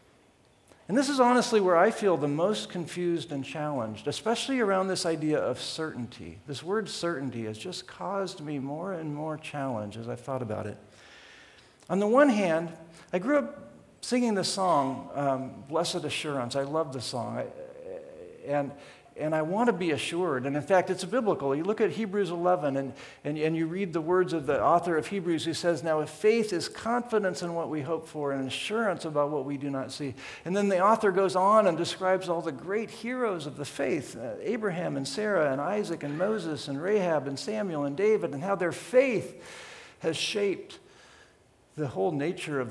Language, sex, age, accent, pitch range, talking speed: English, male, 50-69, American, 140-195 Hz, 195 wpm